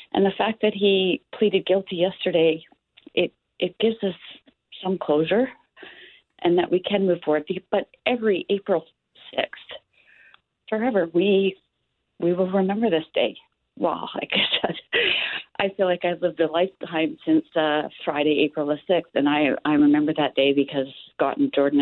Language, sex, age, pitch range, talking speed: English, female, 40-59, 140-185 Hz, 160 wpm